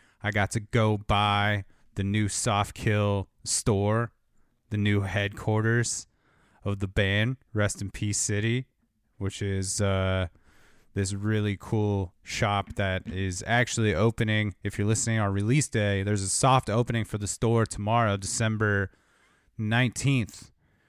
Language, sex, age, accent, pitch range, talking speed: English, male, 30-49, American, 100-110 Hz, 135 wpm